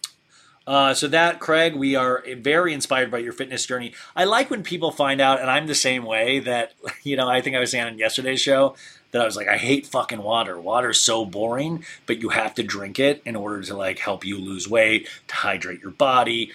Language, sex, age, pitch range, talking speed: English, male, 30-49, 115-160 Hz, 230 wpm